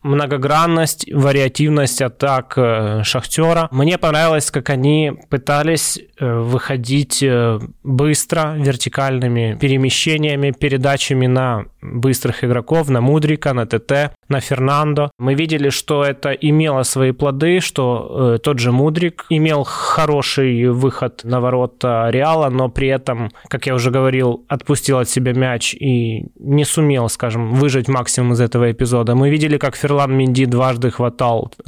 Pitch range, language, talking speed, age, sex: 125-145 Hz, Russian, 135 wpm, 20-39, male